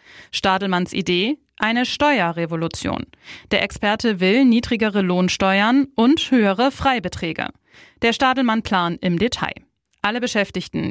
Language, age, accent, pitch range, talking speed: German, 20-39, German, 190-230 Hz, 100 wpm